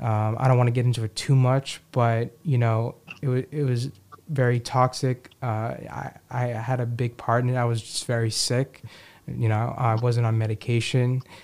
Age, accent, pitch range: 20-39, American, 120-140 Hz